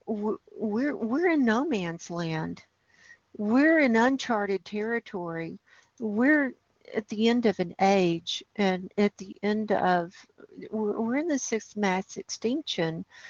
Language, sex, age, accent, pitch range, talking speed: English, female, 60-79, American, 185-225 Hz, 130 wpm